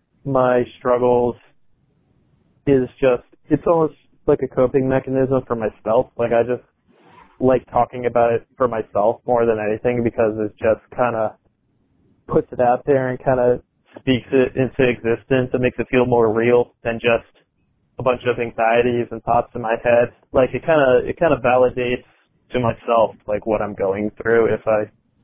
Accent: American